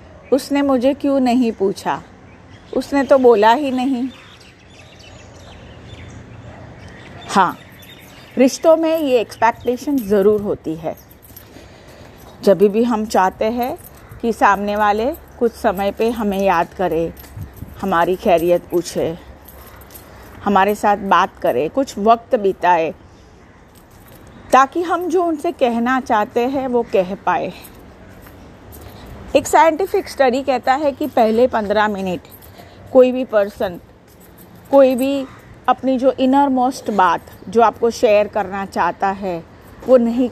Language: Hindi